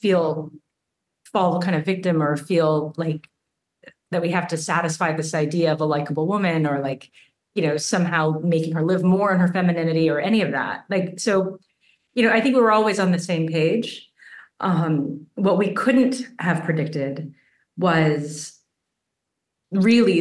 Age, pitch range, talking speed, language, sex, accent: 30-49, 155-185 Hz, 165 wpm, English, female, American